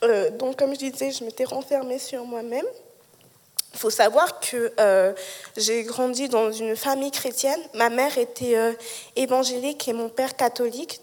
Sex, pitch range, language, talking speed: female, 230-275 Hz, English, 160 wpm